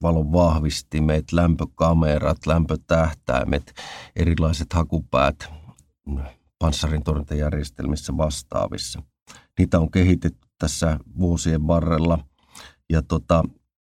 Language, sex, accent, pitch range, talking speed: Finnish, male, native, 80-90 Hz, 70 wpm